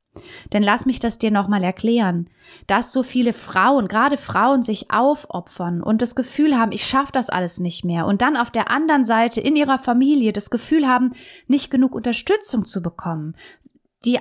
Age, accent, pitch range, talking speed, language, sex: 20-39, German, 200-265 Hz, 180 wpm, German, female